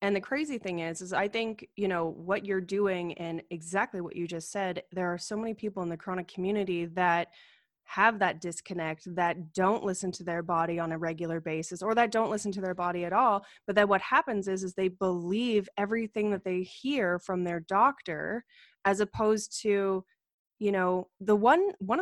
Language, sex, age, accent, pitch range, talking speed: English, female, 20-39, American, 175-205 Hz, 200 wpm